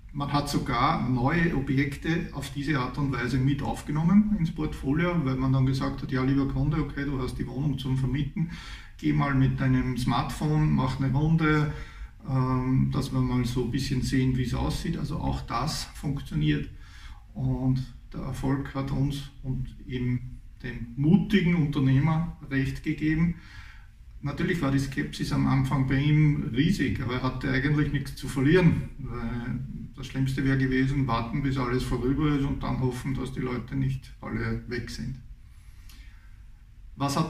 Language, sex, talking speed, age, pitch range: German, male, 160 wpm, 50-69, 125-140 Hz